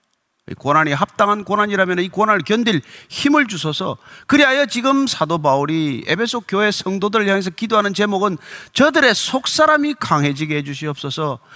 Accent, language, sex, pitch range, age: native, Korean, male, 195-275 Hz, 40-59